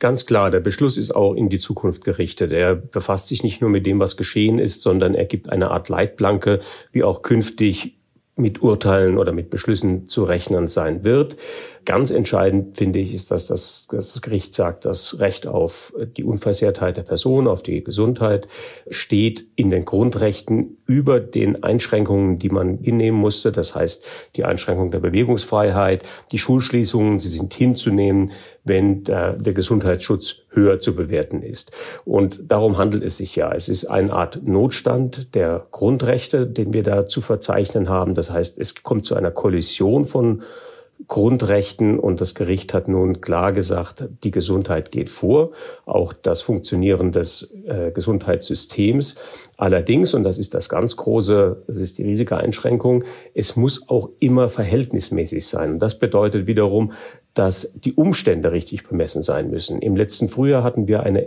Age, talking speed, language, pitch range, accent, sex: 40-59, 165 wpm, German, 95-120 Hz, German, male